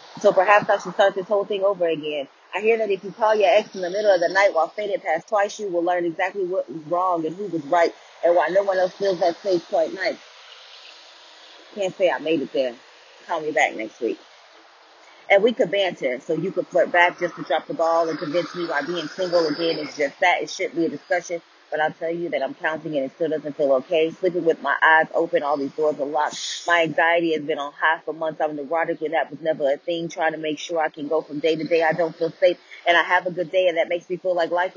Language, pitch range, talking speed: English, 160-185 Hz, 270 wpm